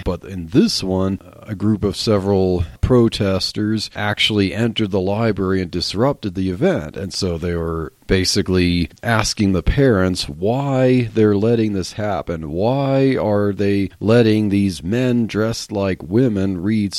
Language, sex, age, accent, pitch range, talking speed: English, male, 40-59, American, 95-120 Hz, 140 wpm